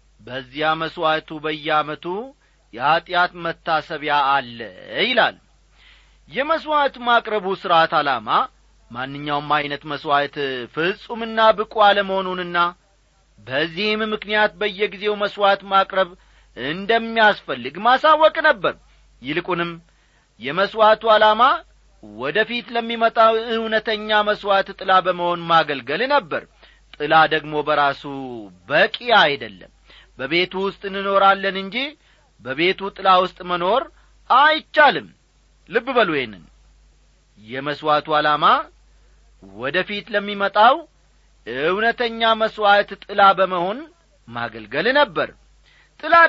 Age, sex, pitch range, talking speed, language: 40-59, male, 150-215 Hz, 85 wpm, Amharic